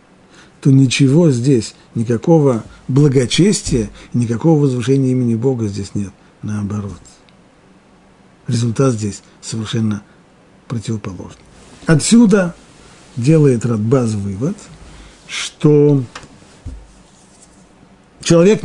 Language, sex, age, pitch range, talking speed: Russian, male, 50-69, 110-160 Hz, 70 wpm